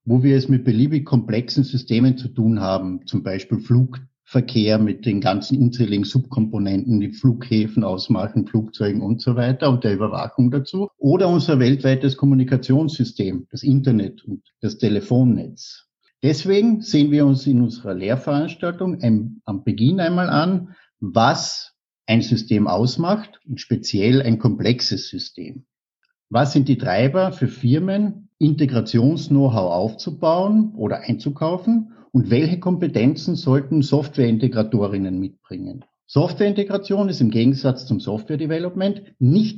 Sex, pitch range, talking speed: male, 115-155 Hz, 125 wpm